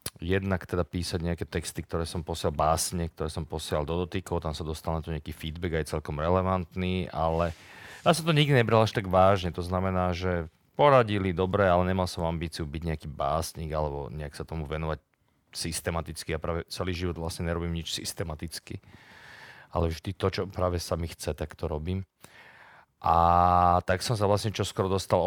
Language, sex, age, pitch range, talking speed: Slovak, male, 40-59, 80-95 Hz, 185 wpm